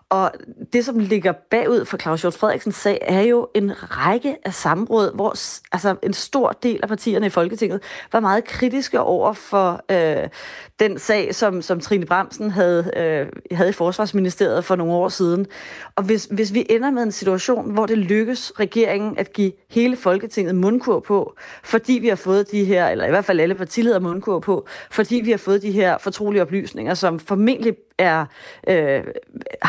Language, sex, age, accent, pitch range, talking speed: Danish, female, 30-49, native, 175-215 Hz, 180 wpm